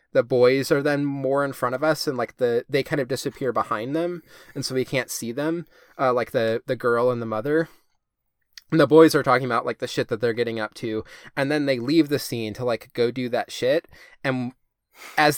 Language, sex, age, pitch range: English, male, 20-39, 120-150 Hz